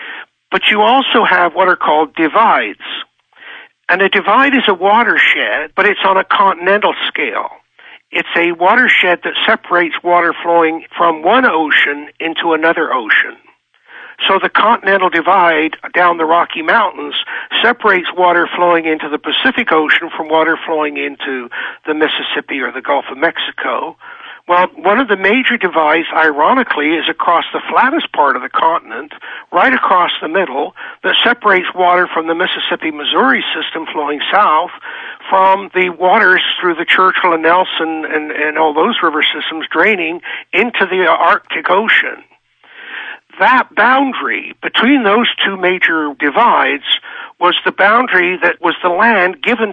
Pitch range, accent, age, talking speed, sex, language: 160-195 Hz, American, 60-79, 145 wpm, male, English